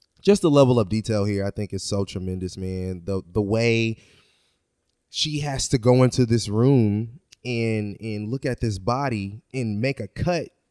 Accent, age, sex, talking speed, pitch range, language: American, 20-39, male, 180 wpm, 105-145 Hz, English